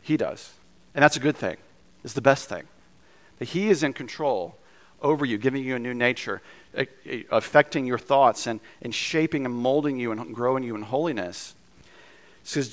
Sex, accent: male, American